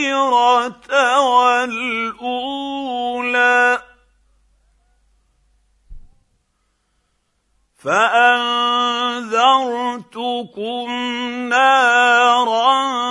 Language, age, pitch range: Arabic, 50-69, 245-275 Hz